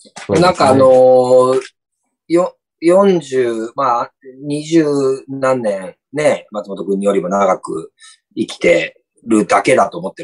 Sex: male